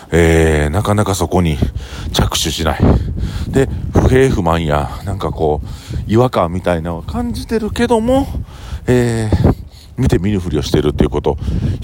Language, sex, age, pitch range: Japanese, male, 40-59, 80-105 Hz